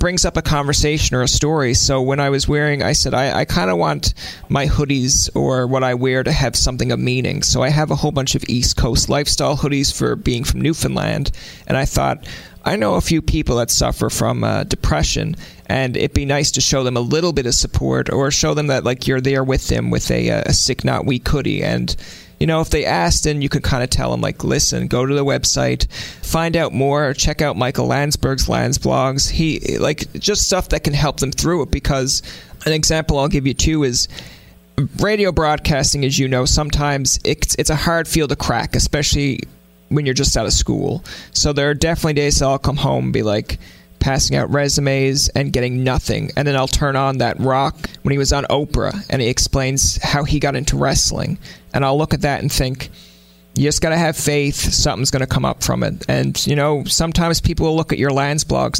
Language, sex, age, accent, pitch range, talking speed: English, male, 30-49, American, 125-150 Hz, 225 wpm